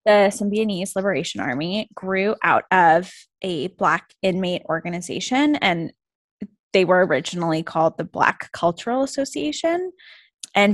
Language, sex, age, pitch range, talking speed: English, female, 10-29, 180-235 Hz, 115 wpm